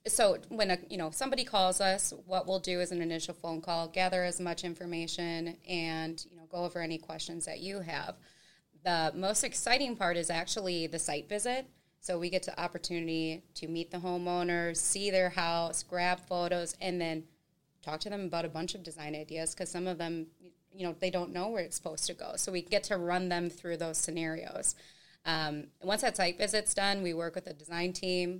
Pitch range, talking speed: 165-180 Hz, 210 wpm